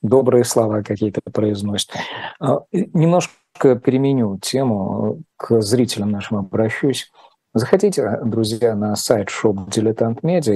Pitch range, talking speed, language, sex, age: 110-130 Hz, 100 wpm, Russian, male, 50-69